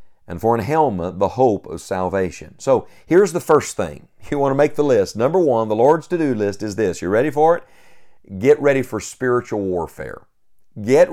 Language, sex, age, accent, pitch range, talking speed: English, male, 50-69, American, 110-145 Hz, 200 wpm